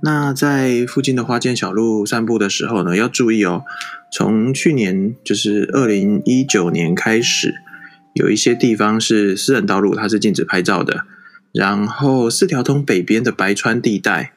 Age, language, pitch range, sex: 20-39, Chinese, 100-125 Hz, male